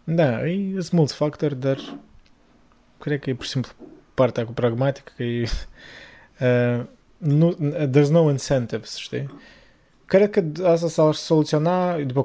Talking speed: 135 wpm